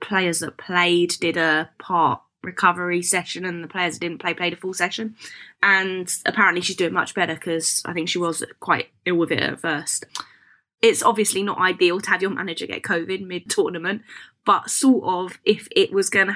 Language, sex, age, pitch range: English, female, 20-39, 165-195 Hz